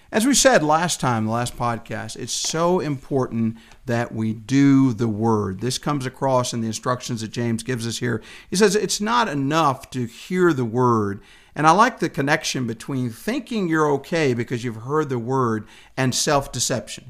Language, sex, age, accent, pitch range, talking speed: English, male, 50-69, American, 130-185 Hz, 185 wpm